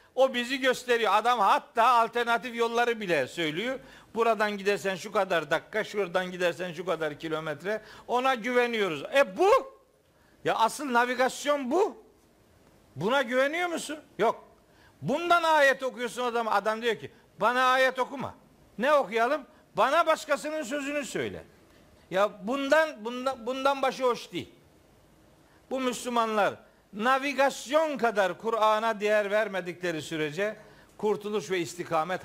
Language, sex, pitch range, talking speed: Turkish, male, 195-265 Hz, 120 wpm